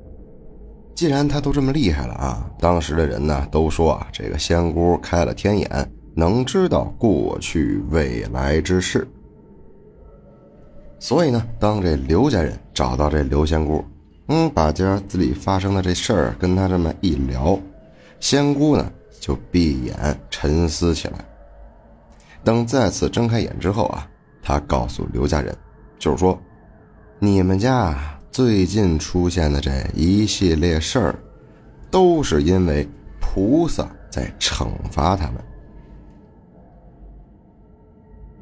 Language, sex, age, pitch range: Chinese, male, 30-49, 75-100 Hz